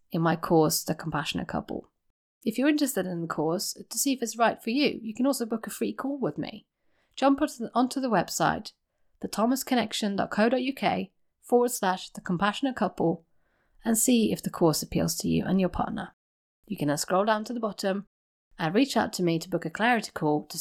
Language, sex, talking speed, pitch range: English, female, 195 wpm, 180-245 Hz